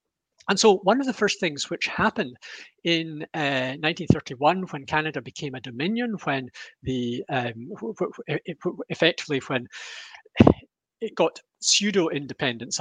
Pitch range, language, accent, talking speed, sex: 140-195 Hz, English, British, 135 wpm, male